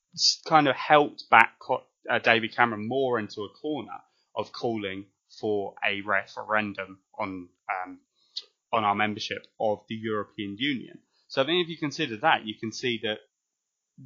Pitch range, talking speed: 105-130 Hz, 155 wpm